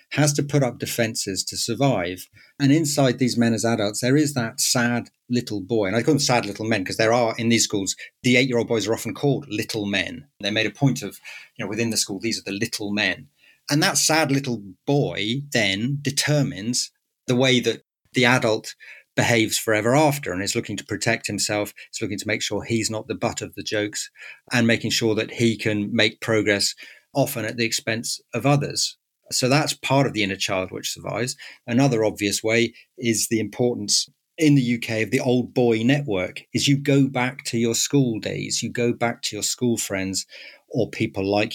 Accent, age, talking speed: British, 40-59, 205 wpm